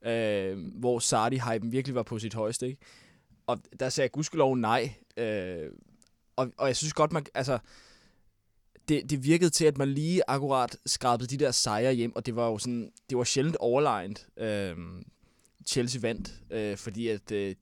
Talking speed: 175 wpm